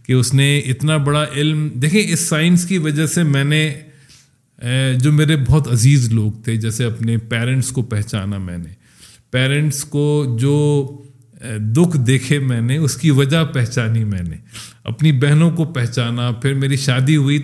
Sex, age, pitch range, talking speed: male, 40-59, 120-175 Hz, 165 wpm